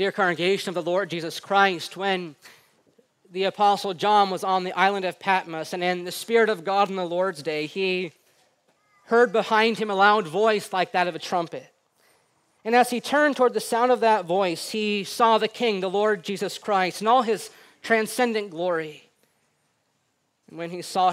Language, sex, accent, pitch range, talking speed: English, male, American, 180-230 Hz, 185 wpm